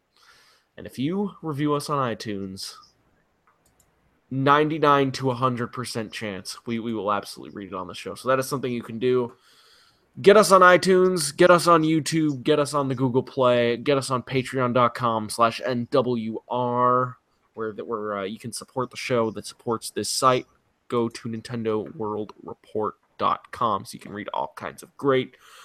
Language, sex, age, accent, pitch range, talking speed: English, male, 20-39, American, 110-135 Hz, 165 wpm